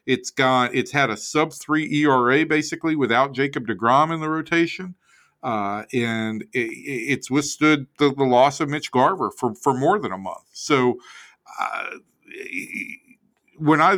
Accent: American